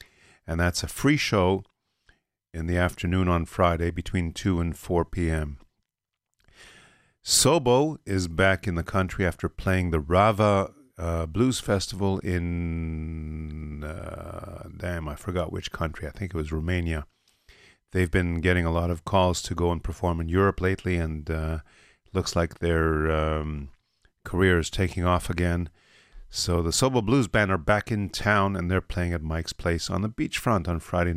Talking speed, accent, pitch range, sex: 165 wpm, American, 85-100 Hz, male